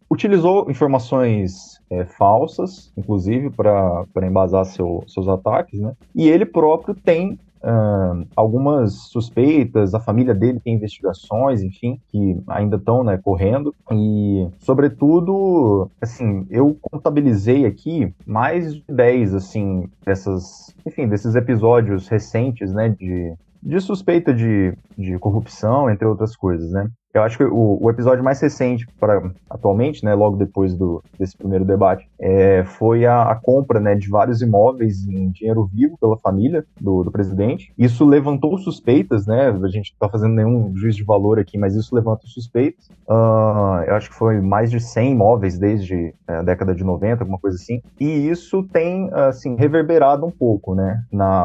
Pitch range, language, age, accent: 100-130 Hz, Portuguese, 20-39, Brazilian